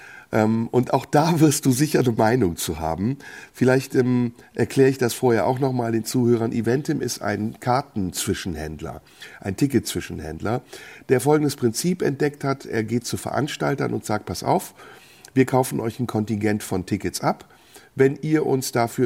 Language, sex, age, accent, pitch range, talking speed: German, male, 50-69, German, 100-140 Hz, 160 wpm